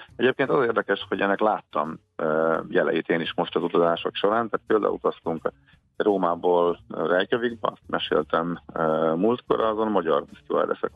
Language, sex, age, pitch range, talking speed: Hungarian, male, 40-59, 85-105 Hz, 125 wpm